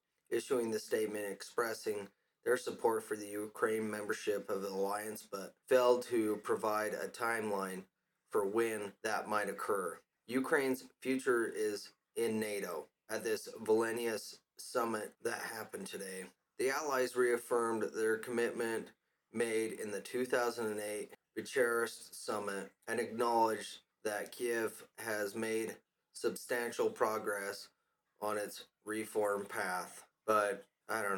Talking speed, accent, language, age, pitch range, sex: 120 wpm, American, English, 30-49, 105-125 Hz, male